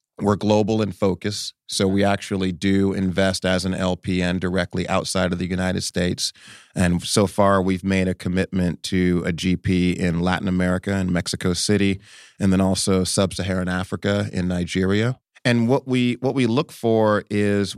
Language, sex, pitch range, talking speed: English, male, 95-105 Hz, 165 wpm